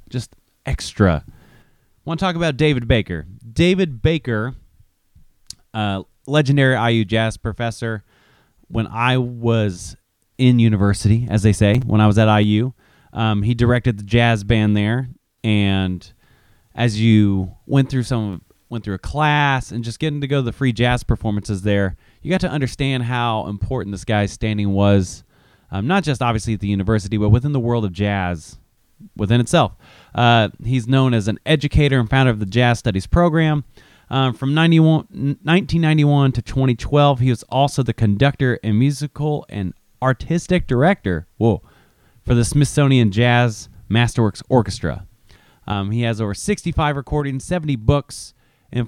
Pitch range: 105-135 Hz